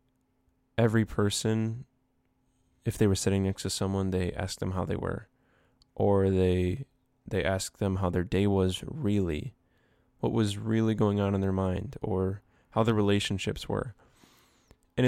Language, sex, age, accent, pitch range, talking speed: English, male, 10-29, American, 95-115 Hz, 155 wpm